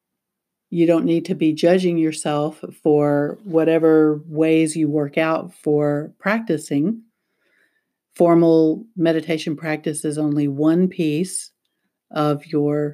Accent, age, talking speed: American, 50-69, 110 wpm